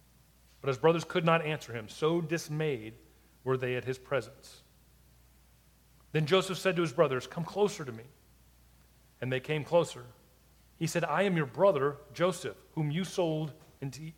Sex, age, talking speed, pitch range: male, 40-59, 165 wpm, 130-170 Hz